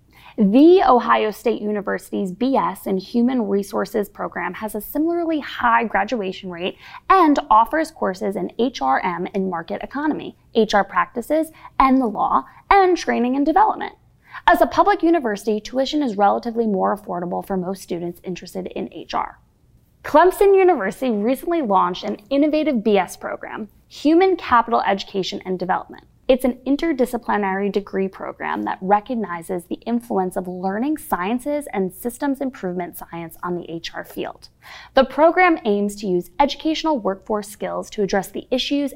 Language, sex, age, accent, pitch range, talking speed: English, female, 20-39, American, 190-290 Hz, 140 wpm